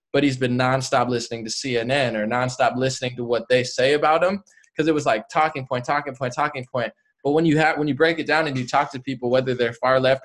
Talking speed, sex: 260 wpm, male